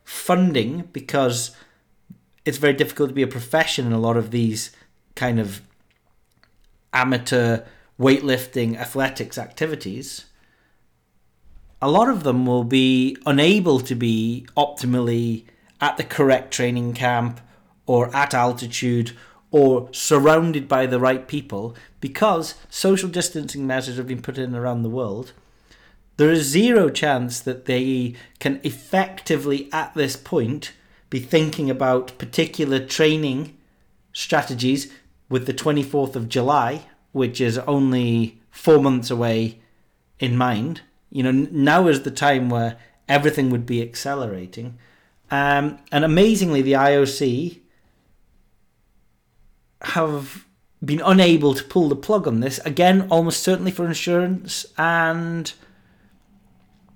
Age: 40-59